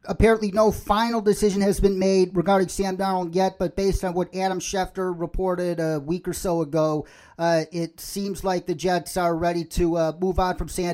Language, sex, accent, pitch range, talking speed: English, male, American, 170-210 Hz, 205 wpm